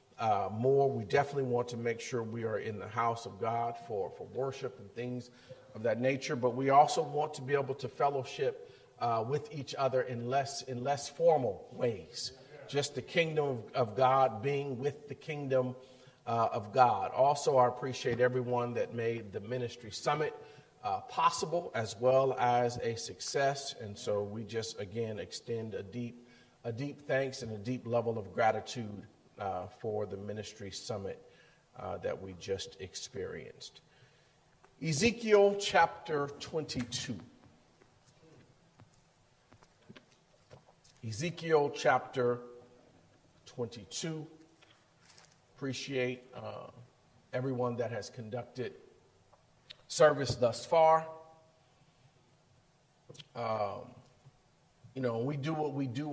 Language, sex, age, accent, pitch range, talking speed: English, male, 40-59, American, 120-140 Hz, 130 wpm